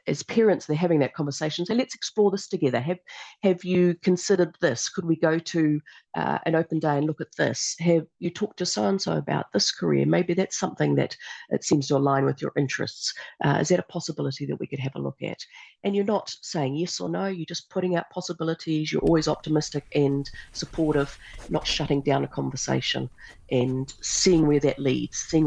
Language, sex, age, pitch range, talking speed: English, female, 50-69, 135-175 Hz, 210 wpm